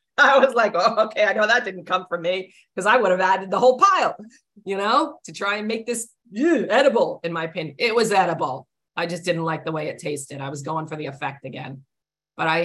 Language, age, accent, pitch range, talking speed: English, 40-59, American, 145-190 Hz, 240 wpm